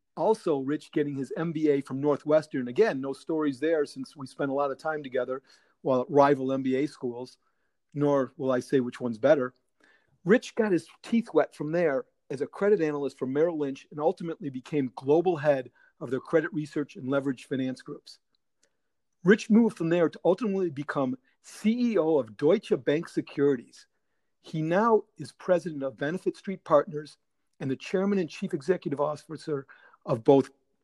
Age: 50-69